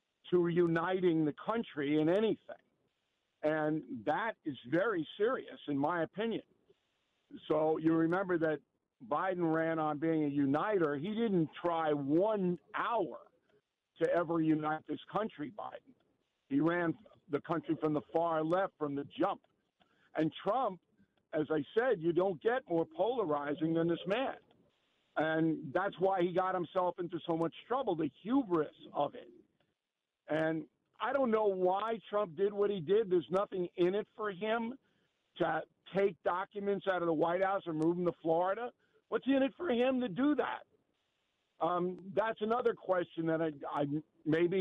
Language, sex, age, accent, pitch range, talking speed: English, male, 60-79, American, 160-210 Hz, 155 wpm